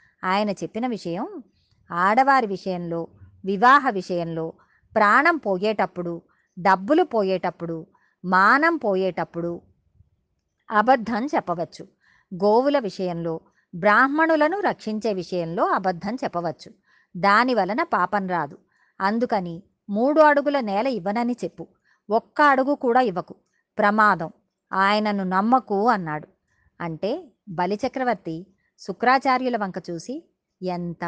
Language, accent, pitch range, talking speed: Telugu, native, 185-245 Hz, 85 wpm